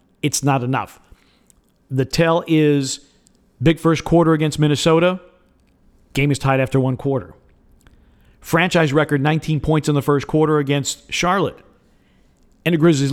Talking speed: 135 wpm